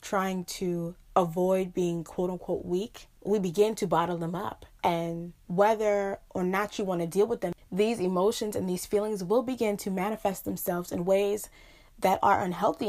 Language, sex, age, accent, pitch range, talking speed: English, female, 20-39, American, 170-195 Hz, 170 wpm